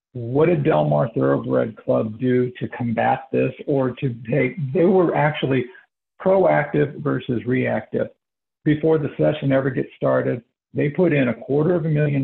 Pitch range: 115-150 Hz